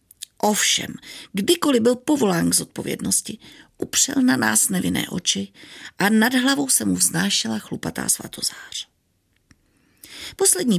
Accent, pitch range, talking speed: native, 190-275 Hz, 110 wpm